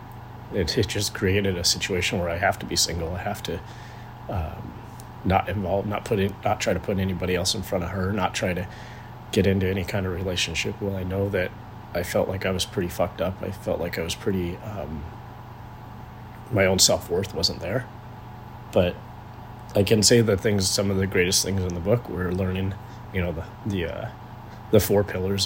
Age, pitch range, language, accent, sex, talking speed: 30-49, 95-115 Hz, English, American, male, 210 wpm